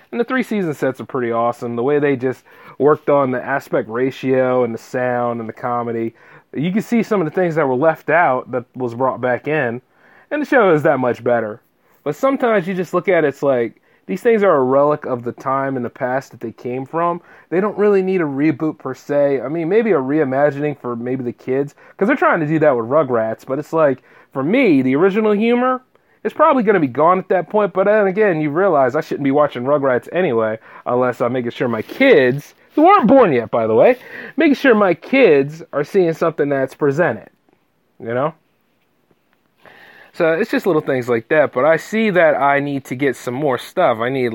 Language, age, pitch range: English, 30-49, 125-180 Hz